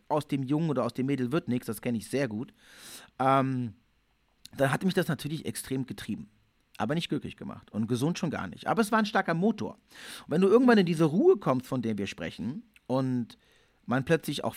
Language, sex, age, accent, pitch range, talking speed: German, male, 40-59, German, 120-180 Hz, 220 wpm